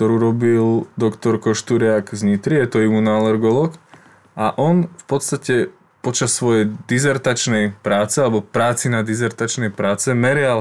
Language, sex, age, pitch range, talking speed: Slovak, male, 20-39, 110-135 Hz, 125 wpm